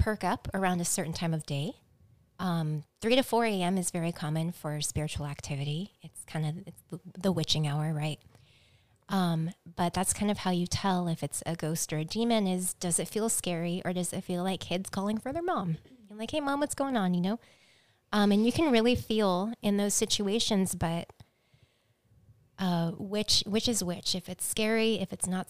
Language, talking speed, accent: English, 200 wpm, American